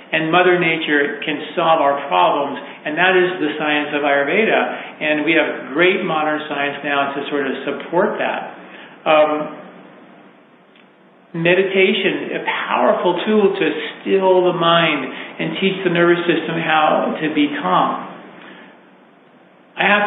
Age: 40-59